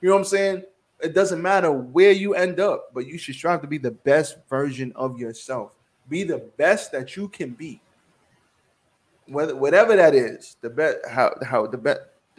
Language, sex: English, male